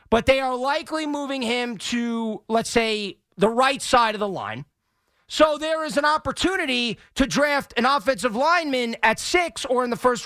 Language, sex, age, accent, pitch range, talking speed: English, male, 40-59, American, 200-265 Hz, 180 wpm